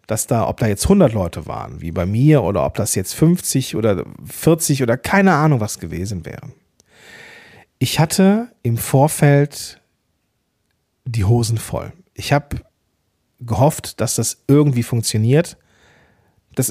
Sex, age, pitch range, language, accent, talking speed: male, 40-59, 115-155 Hz, German, German, 140 wpm